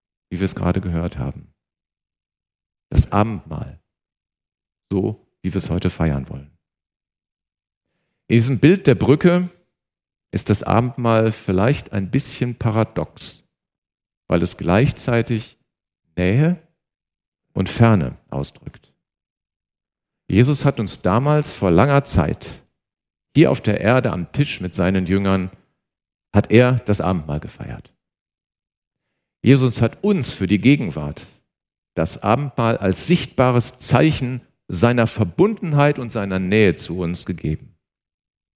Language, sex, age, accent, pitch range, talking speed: German, male, 50-69, German, 90-135 Hz, 115 wpm